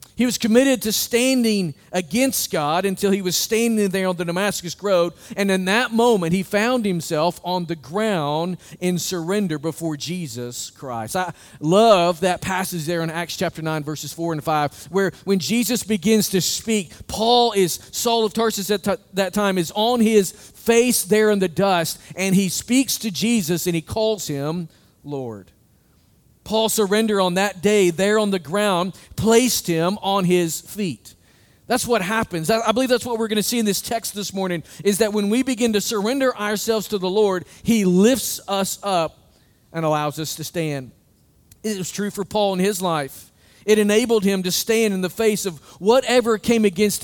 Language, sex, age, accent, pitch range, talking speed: English, male, 40-59, American, 170-220 Hz, 185 wpm